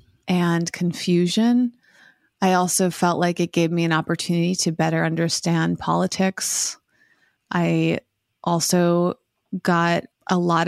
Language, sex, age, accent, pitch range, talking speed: English, female, 30-49, American, 165-180 Hz, 110 wpm